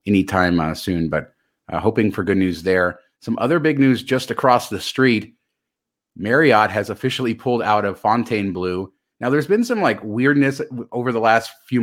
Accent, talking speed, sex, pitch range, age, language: American, 180 wpm, male, 100-120 Hz, 30-49, English